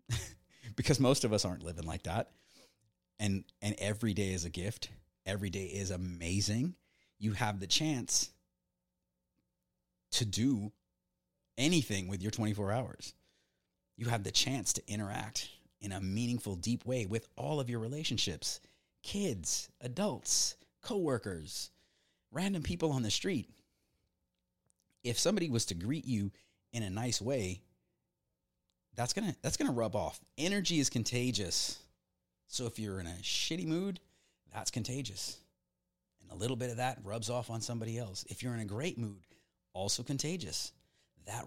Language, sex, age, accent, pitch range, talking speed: English, male, 30-49, American, 90-120 Hz, 150 wpm